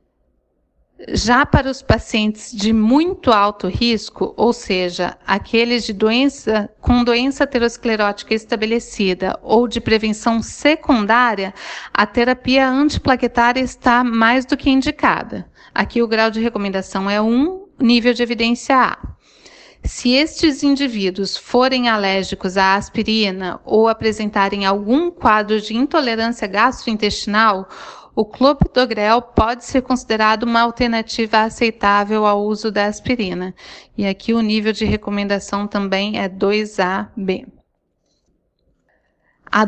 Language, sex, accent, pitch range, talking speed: Portuguese, female, Brazilian, 205-245 Hz, 115 wpm